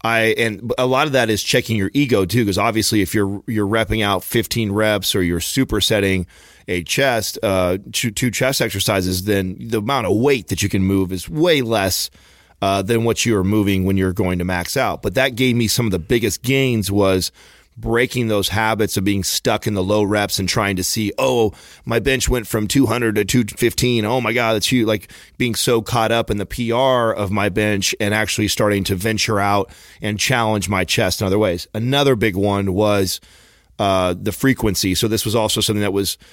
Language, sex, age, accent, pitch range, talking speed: English, male, 30-49, American, 95-115 Hz, 210 wpm